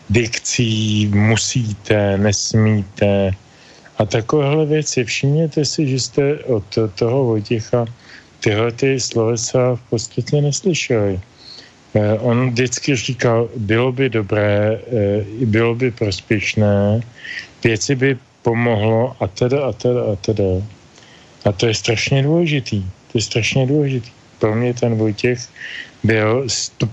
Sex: male